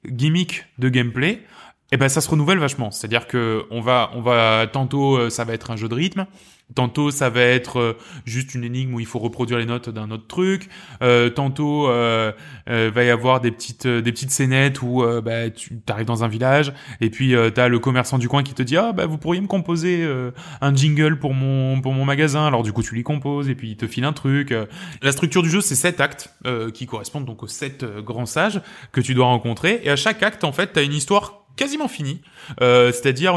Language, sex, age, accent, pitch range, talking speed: French, male, 20-39, French, 120-145 Hz, 245 wpm